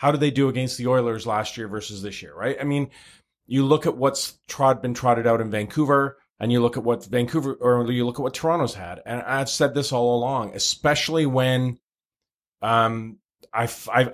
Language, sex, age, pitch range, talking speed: English, male, 30-49, 115-135 Hz, 205 wpm